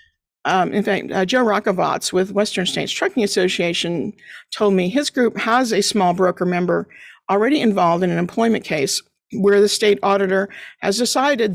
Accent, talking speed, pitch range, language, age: American, 165 wpm, 190-245 Hz, English, 50-69